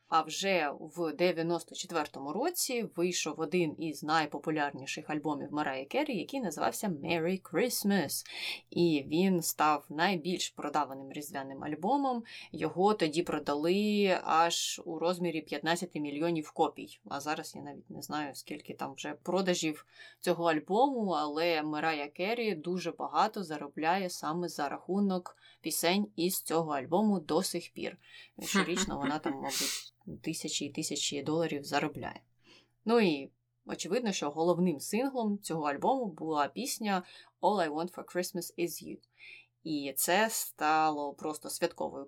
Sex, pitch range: female, 150-185 Hz